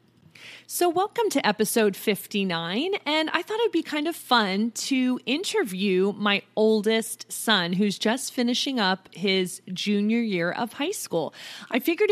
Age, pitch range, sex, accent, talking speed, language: 30-49, 205-270 Hz, female, American, 150 wpm, English